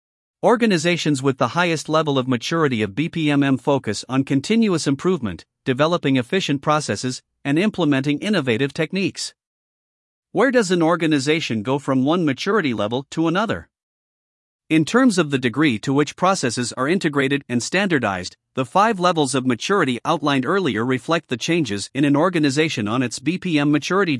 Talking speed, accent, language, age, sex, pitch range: 150 wpm, American, English, 50-69, male, 130-165 Hz